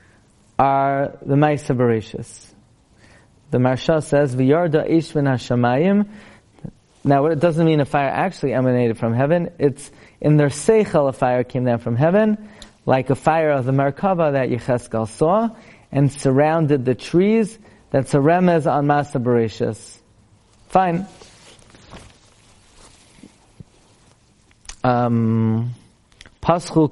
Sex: male